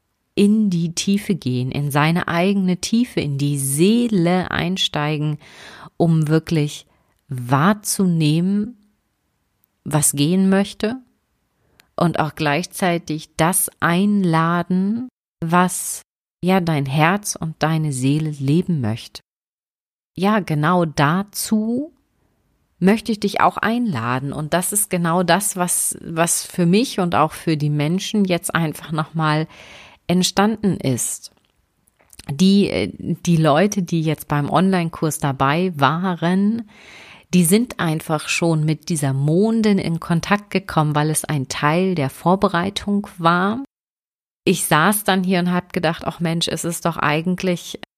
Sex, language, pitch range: female, German, 155-195 Hz